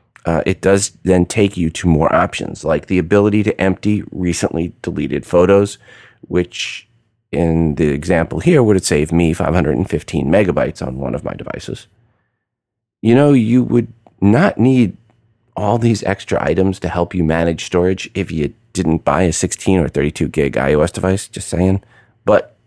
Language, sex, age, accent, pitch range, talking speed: English, male, 30-49, American, 85-115 Hz, 165 wpm